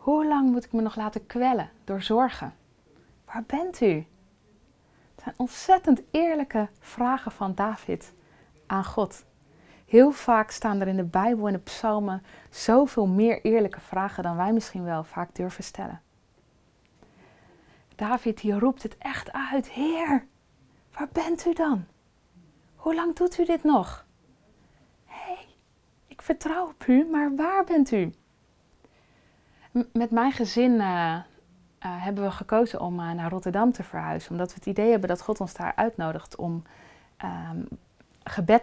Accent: Dutch